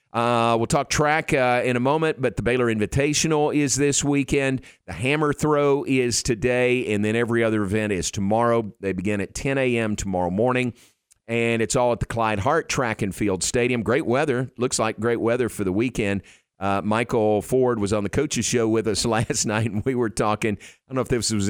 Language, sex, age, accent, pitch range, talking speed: English, male, 50-69, American, 100-125 Hz, 210 wpm